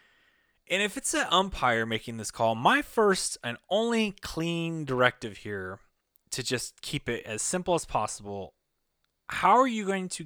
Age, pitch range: 20-39, 110-155 Hz